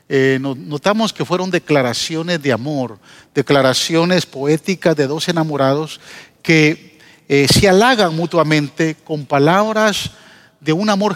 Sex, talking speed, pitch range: male, 120 wpm, 140-180 Hz